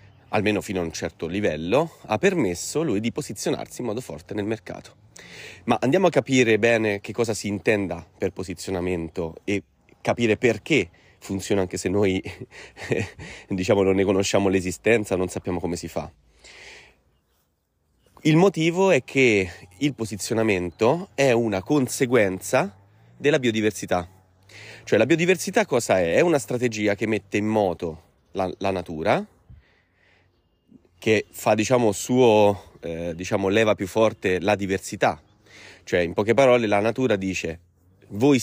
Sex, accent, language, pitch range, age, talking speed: male, native, Italian, 90-115 Hz, 30-49, 140 wpm